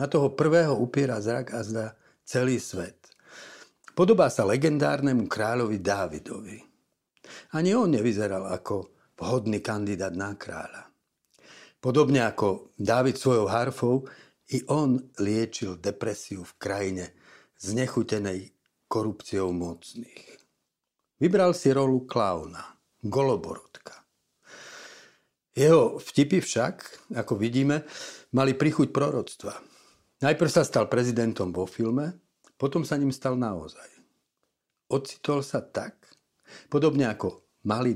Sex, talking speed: male, 105 wpm